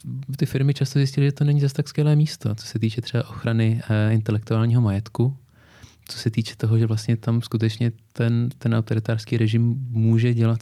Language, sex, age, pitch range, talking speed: English, male, 20-39, 110-130 Hz, 190 wpm